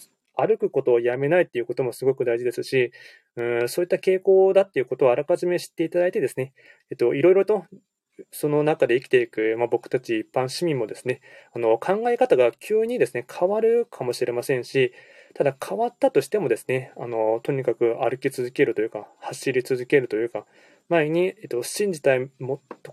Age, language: 20-39, Japanese